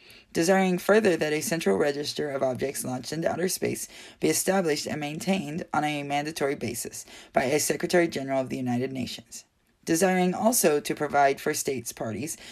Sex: female